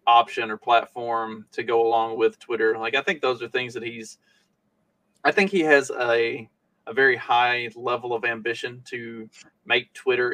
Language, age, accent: English, 20-39, American